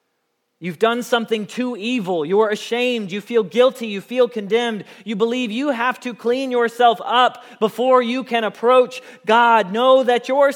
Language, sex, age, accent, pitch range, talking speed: English, male, 30-49, American, 205-250 Hz, 165 wpm